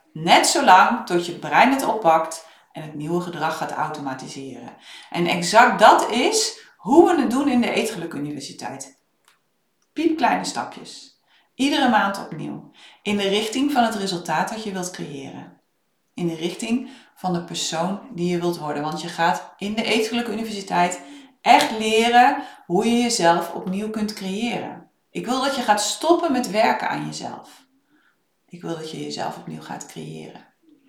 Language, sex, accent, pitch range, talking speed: Dutch, female, Dutch, 170-235 Hz, 160 wpm